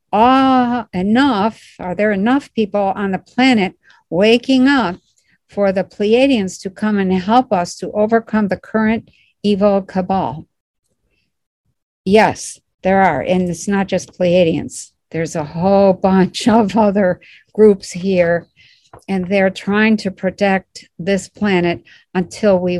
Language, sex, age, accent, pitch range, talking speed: English, female, 60-79, American, 175-215 Hz, 130 wpm